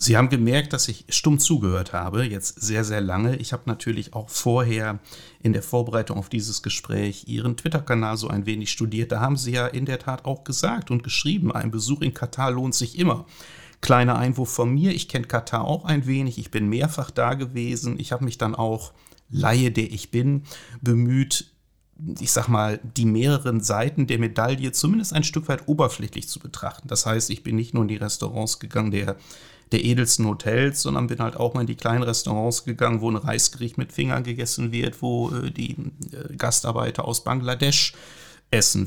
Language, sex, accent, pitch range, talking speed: German, male, German, 110-135 Hz, 190 wpm